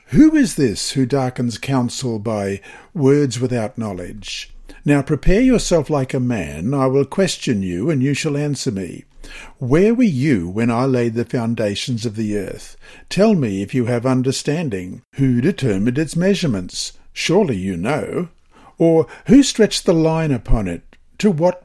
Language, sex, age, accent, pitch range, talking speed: English, male, 50-69, Australian, 125-175 Hz, 160 wpm